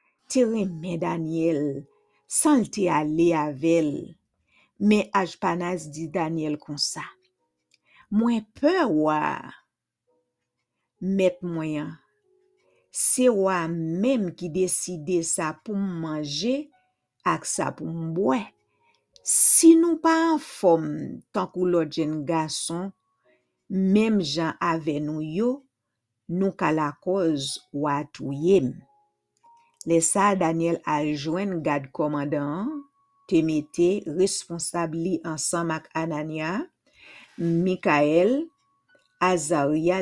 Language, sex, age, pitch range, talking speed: English, female, 50-69, 155-220 Hz, 95 wpm